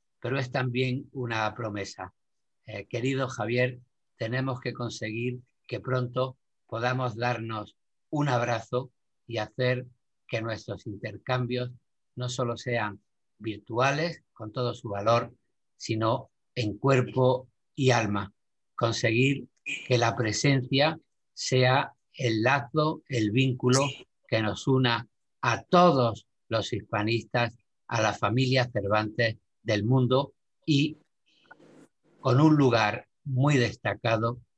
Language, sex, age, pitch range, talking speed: Spanish, male, 50-69, 110-130 Hz, 110 wpm